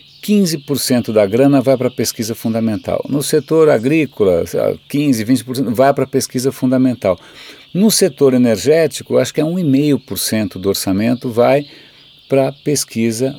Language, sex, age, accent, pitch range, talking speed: Portuguese, male, 50-69, Brazilian, 115-150 Hz, 135 wpm